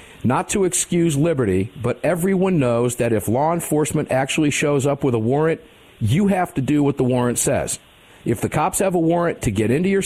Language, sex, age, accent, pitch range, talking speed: English, male, 50-69, American, 120-150 Hz, 210 wpm